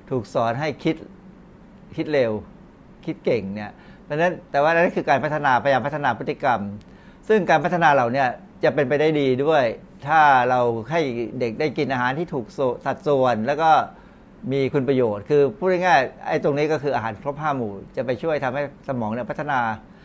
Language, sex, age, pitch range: Thai, male, 60-79, 120-160 Hz